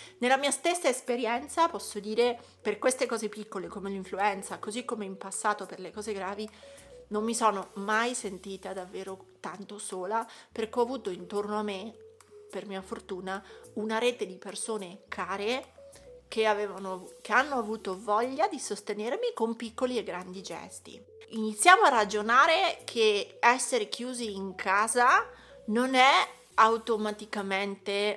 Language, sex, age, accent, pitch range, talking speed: Italian, female, 30-49, native, 200-245 Hz, 140 wpm